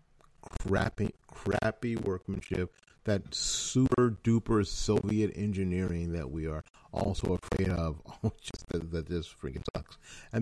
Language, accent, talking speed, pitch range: English, American, 120 wpm, 85-105 Hz